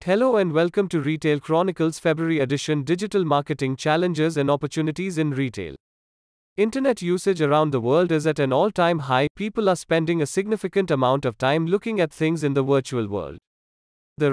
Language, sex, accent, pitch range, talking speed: English, male, Indian, 140-180 Hz, 170 wpm